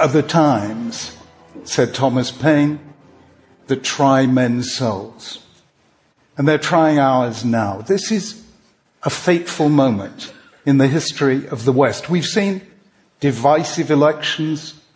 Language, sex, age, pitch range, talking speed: English, male, 60-79, 135-175 Hz, 120 wpm